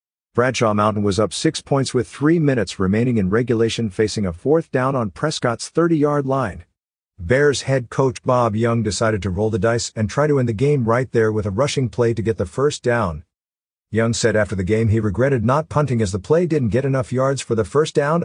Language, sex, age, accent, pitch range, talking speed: English, male, 50-69, American, 100-130 Hz, 220 wpm